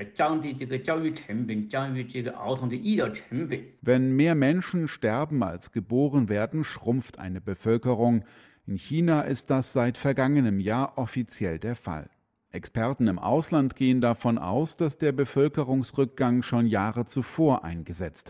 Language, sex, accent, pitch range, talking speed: German, male, German, 105-135 Hz, 110 wpm